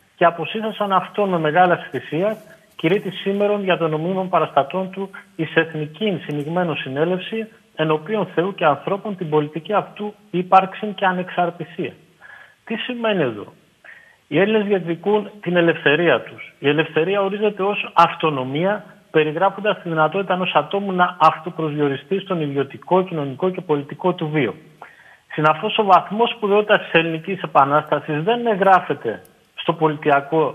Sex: male